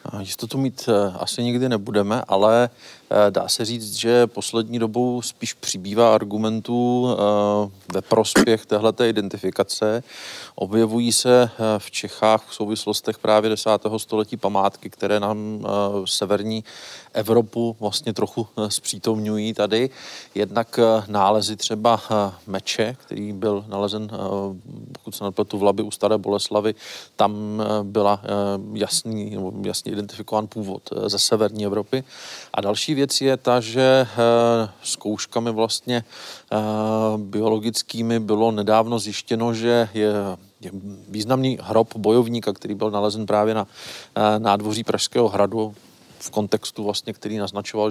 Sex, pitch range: male, 105-115 Hz